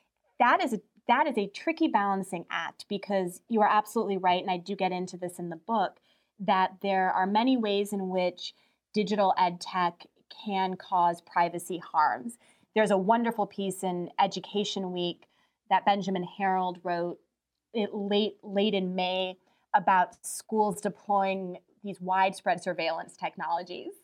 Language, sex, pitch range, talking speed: English, female, 185-220 Hz, 150 wpm